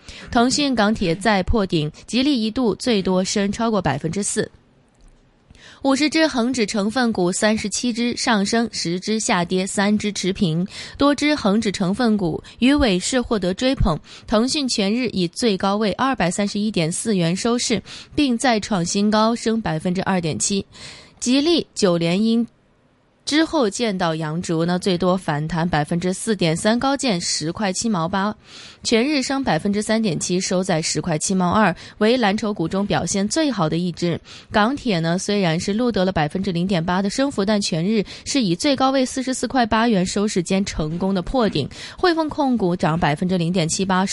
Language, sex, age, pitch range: Chinese, female, 20-39, 180-235 Hz